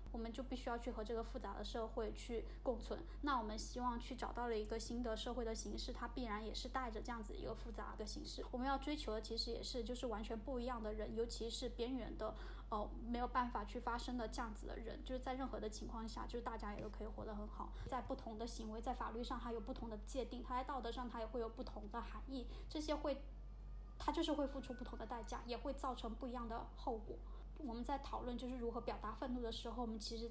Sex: female